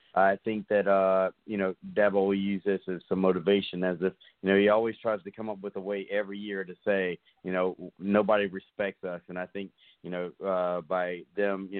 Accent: American